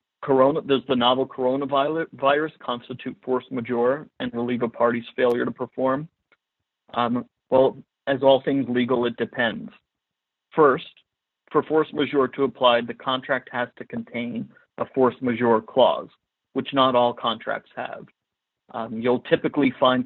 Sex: male